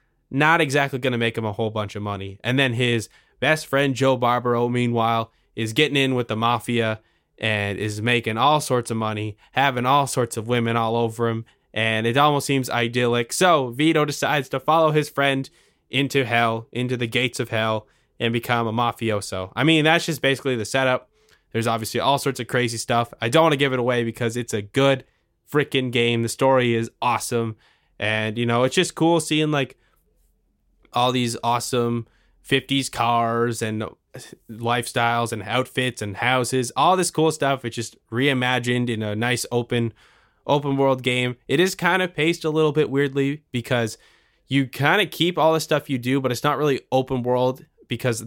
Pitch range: 115-140 Hz